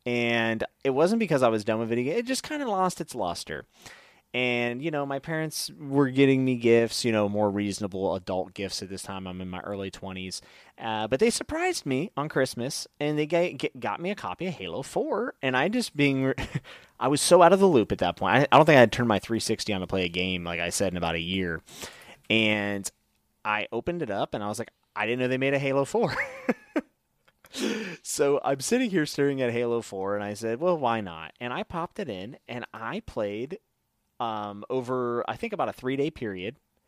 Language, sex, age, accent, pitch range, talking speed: English, male, 30-49, American, 100-145 Hz, 220 wpm